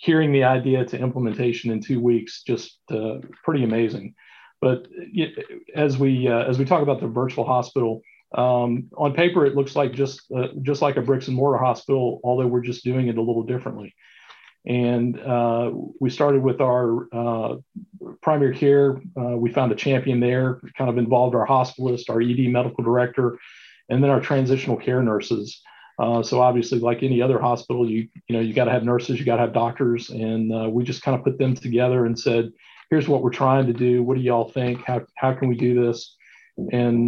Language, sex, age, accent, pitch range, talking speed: English, male, 40-59, American, 120-135 Hz, 200 wpm